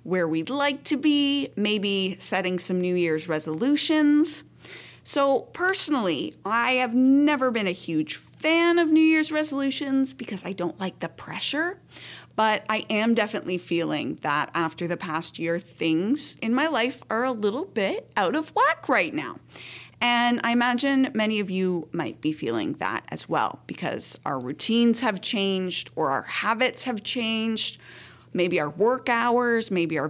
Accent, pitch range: American, 175-270 Hz